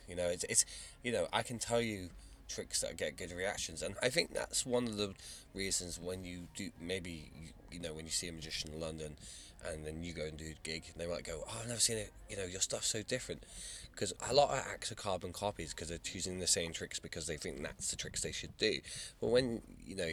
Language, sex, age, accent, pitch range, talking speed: English, male, 20-39, British, 85-105 Hz, 260 wpm